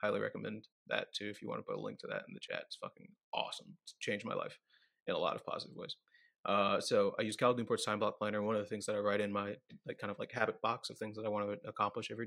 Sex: male